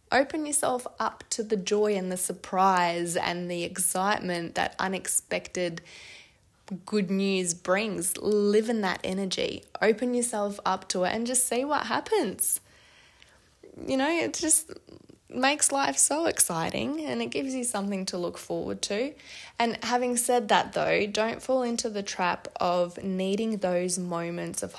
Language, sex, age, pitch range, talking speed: English, female, 20-39, 180-240 Hz, 150 wpm